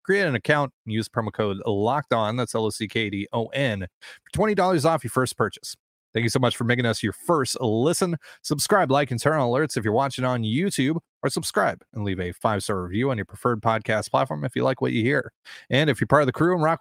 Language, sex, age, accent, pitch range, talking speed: English, male, 30-49, American, 105-140 Hz, 255 wpm